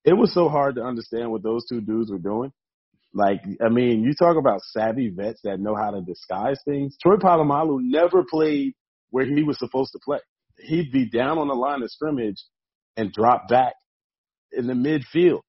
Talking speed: 195 wpm